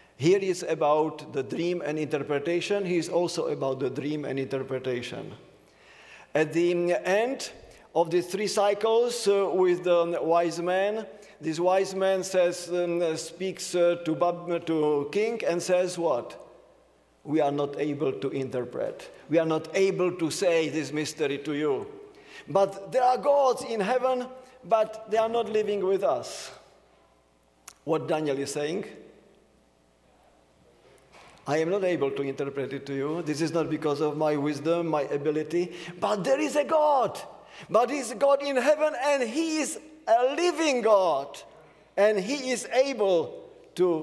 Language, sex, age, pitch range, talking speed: English, male, 50-69, 150-205 Hz, 155 wpm